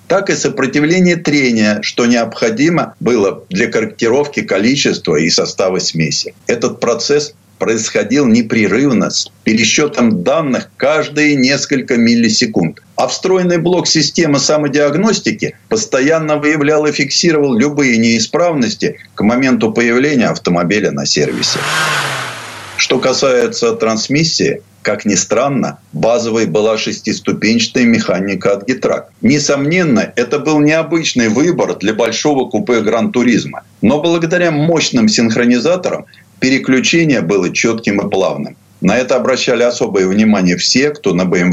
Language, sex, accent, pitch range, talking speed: Russian, male, native, 120-170 Hz, 115 wpm